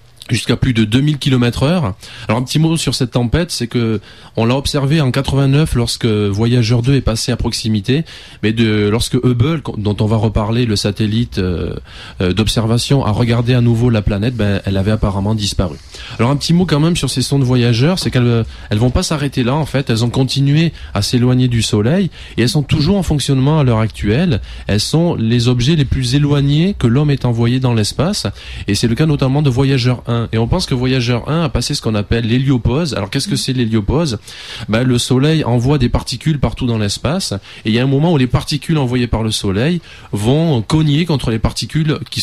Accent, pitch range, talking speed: French, 110-140 Hz, 215 wpm